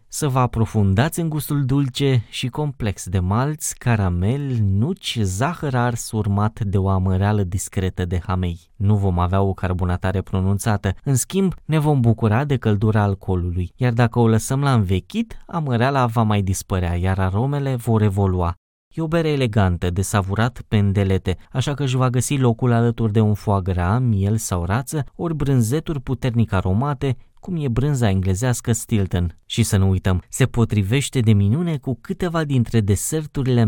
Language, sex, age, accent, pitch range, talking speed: Romanian, male, 20-39, native, 95-130 Hz, 160 wpm